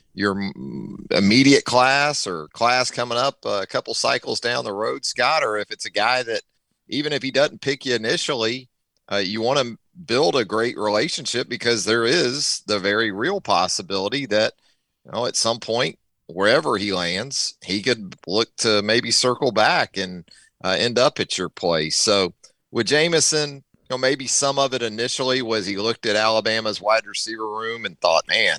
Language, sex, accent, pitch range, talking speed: English, male, American, 95-120 Hz, 180 wpm